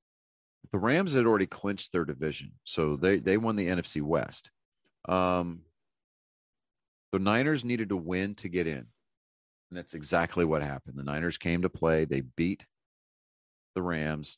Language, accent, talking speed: English, American, 155 wpm